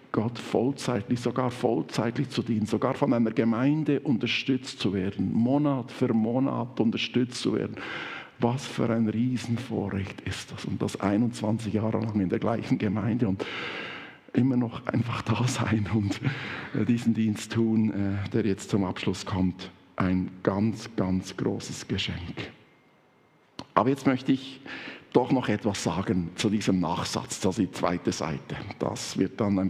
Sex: male